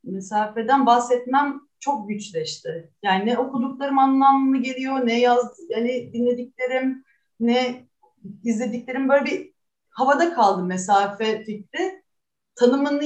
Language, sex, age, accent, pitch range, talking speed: Turkish, female, 30-49, native, 215-275 Hz, 100 wpm